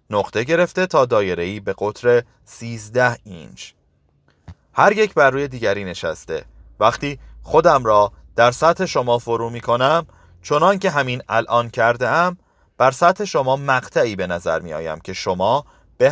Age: 30-49